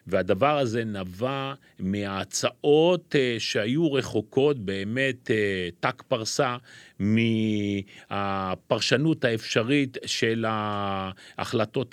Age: 40-59